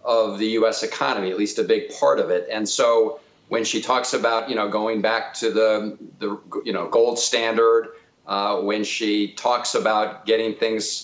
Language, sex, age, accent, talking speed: English, male, 50-69, American, 190 wpm